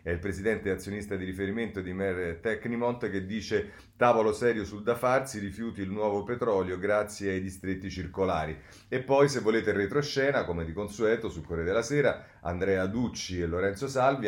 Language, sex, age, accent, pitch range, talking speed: Italian, male, 30-49, native, 95-115 Hz, 170 wpm